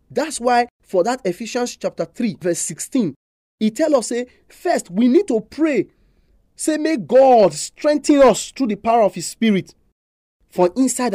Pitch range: 170-245 Hz